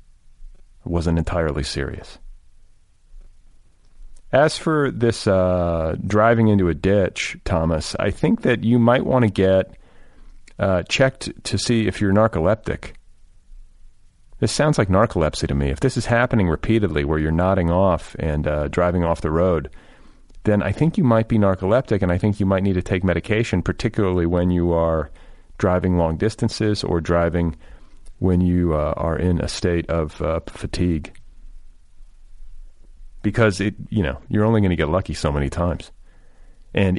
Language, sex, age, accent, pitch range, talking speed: English, male, 40-59, American, 80-100 Hz, 155 wpm